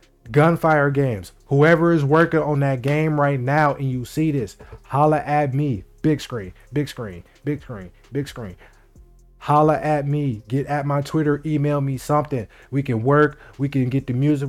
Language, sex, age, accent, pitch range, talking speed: English, male, 20-39, American, 120-145 Hz, 180 wpm